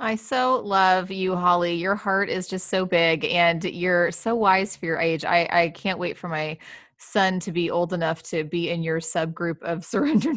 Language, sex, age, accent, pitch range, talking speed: English, female, 20-39, American, 165-190 Hz, 210 wpm